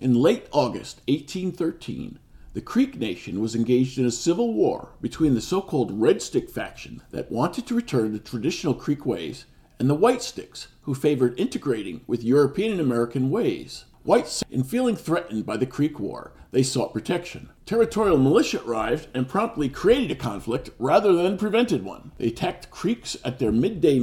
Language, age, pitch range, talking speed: English, 50-69, 120-165 Hz, 170 wpm